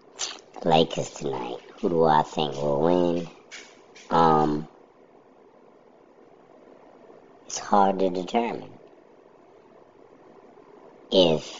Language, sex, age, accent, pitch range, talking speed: English, male, 50-69, American, 70-80 Hz, 70 wpm